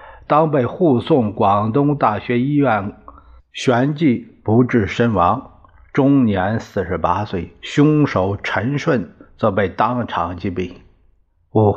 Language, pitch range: Chinese, 100-135 Hz